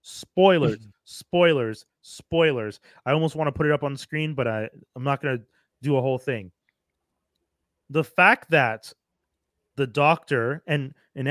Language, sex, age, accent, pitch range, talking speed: English, male, 30-49, American, 140-165 Hz, 155 wpm